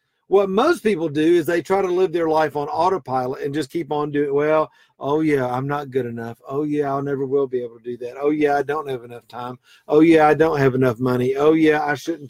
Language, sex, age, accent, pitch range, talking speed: English, male, 50-69, American, 140-210 Hz, 265 wpm